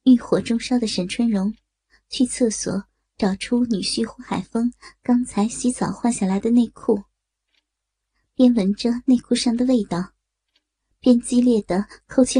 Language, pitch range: Chinese, 200-245 Hz